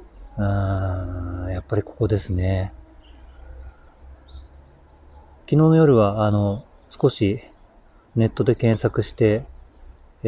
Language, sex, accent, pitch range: Japanese, male, native, 90-120 Hz